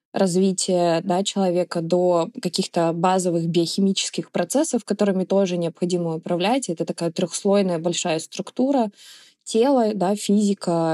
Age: 20-39